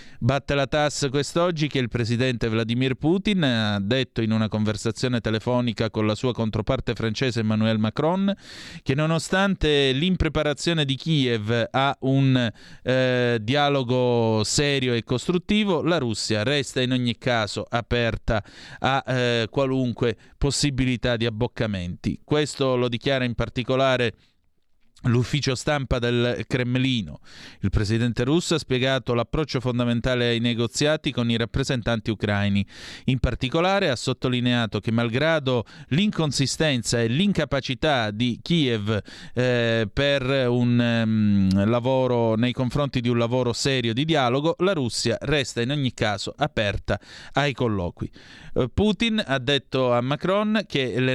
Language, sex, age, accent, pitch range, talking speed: Italian, male, 30-49, native, 115-140 Hz, 130 wpm